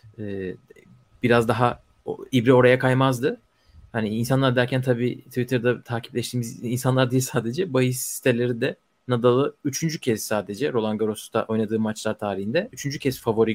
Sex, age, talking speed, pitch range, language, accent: male, 30-49, 130 wpm, 110-135 Hz, Turkish, native